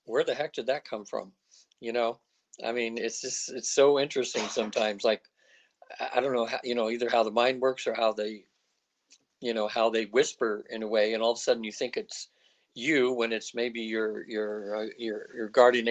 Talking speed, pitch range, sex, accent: 220 wpm, 110-120 Hz, male, American